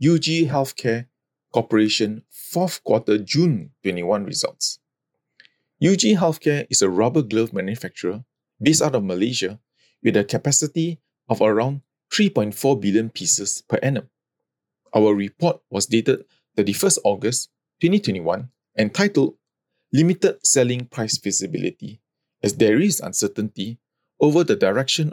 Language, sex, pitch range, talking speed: English, male, 110-155 Hz, 115 wpm